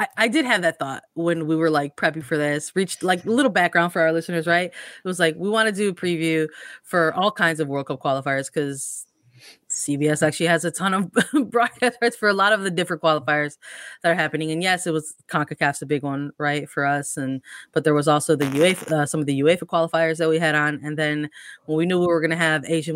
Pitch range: 155-185 Hz